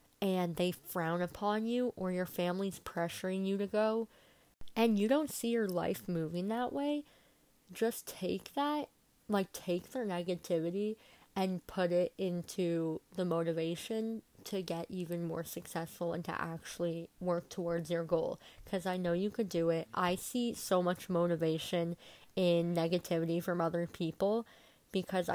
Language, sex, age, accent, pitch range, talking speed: English, female, 20-39, American, 170-210 Hz, 150 wpm